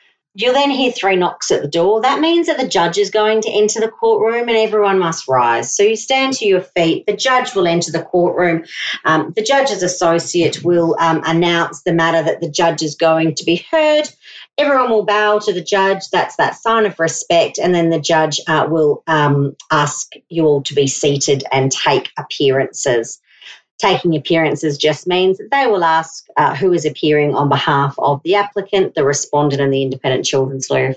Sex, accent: female, Australian